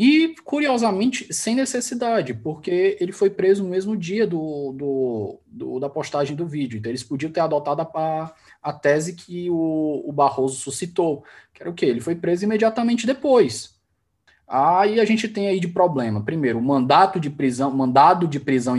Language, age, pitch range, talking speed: Portuguese, 20-39, 140-190 Hz, 180 wpm